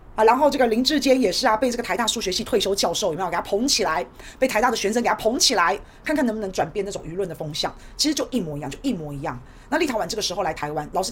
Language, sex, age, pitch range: Chinese, female, 30-49, 175-250 Hz